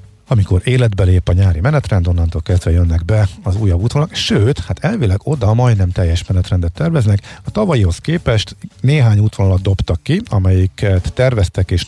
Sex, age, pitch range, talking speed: male, 50-69, 95-120 Hz, 155 wpm